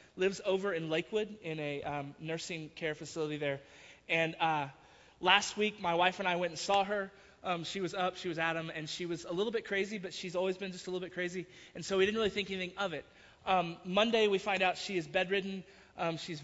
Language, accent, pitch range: English, American, 160-185 Hz